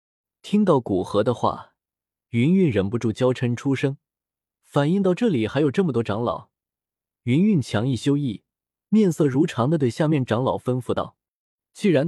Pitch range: 110-165 Hz